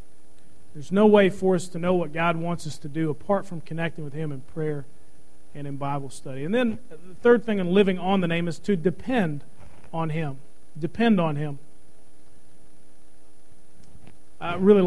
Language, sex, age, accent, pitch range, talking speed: English, male, 40-59, American, 150-195 Hz, 180 wpm